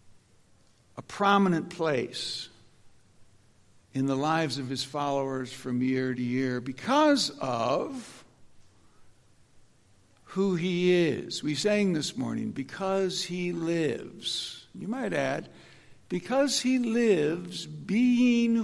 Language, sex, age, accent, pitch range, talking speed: English, male, 60-79, American, 135-190 Hz, 100 wpm